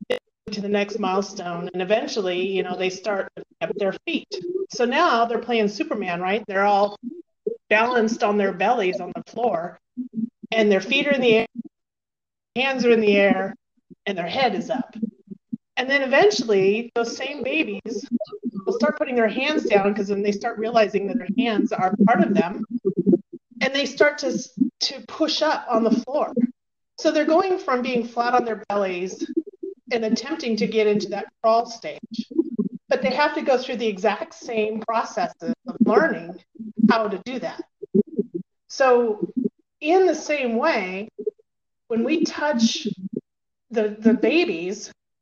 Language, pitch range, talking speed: English, 205-265 Hz, 165 wpm